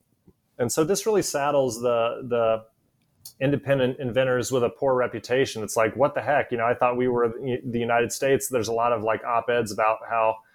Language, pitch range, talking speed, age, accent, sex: English, 120-135 Hz, 200 wpm, 30-49, American, male